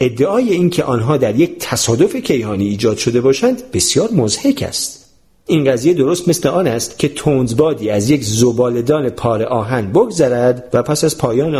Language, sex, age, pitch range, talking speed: Persian, male, 40-59, 110-155 Hz, 160 wpm